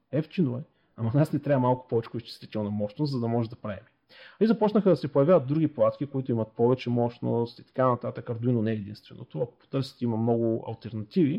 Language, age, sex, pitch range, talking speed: Bulgarian, 40-59, male, 120-160 Hz, 195 wpm